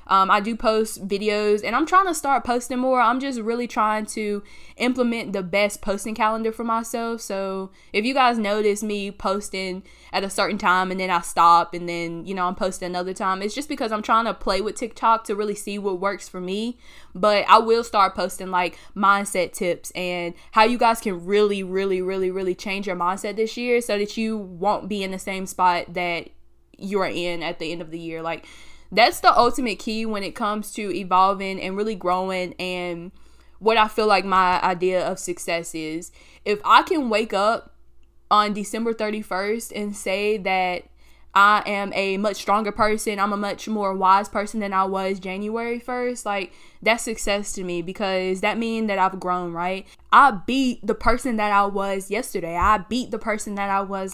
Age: 10-29